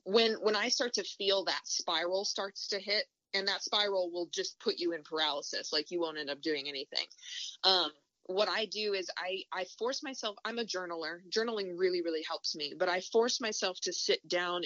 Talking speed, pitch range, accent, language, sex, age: 210 wpm, 170-220 Hz, American, English, female, 20-39